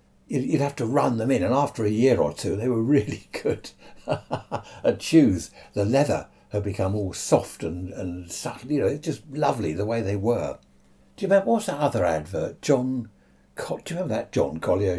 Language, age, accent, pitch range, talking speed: English, 60-79, British, 90-120 Hz, 200 wpm